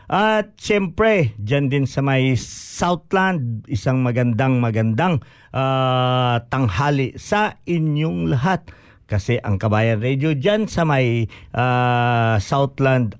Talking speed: 105 wpm